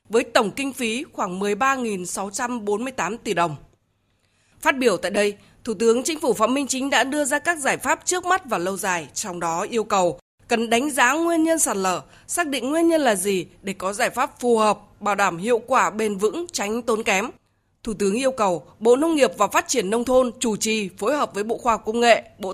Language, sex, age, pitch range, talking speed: Vietnamese, female, 20-39, 200-270 Hz, 225 wpm